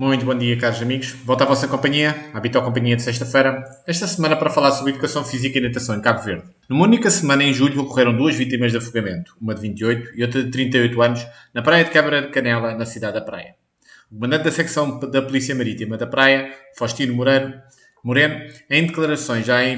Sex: male